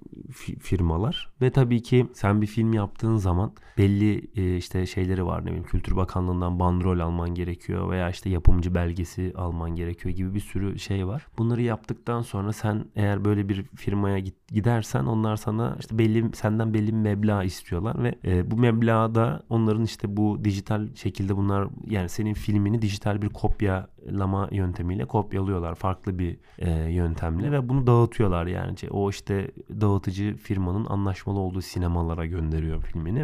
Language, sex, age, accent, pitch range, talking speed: Turkish, male, 30-49, native, 90-115 Hz, 150 wpm